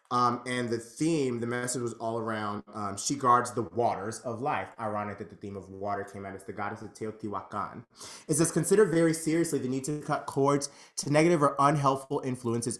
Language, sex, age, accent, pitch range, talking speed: English, male, 30-49, American, 105-140 Hz, 205 wpm